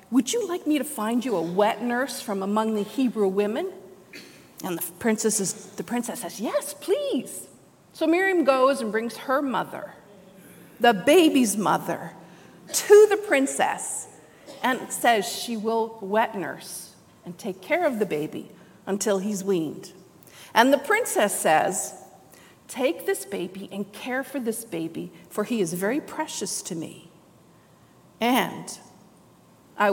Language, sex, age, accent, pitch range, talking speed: English, female, 50-69, American, 195-300 Hz, 140 wpm